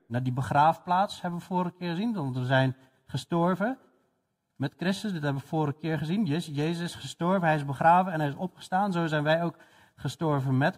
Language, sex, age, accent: Dutch, male, 40-59, Dutch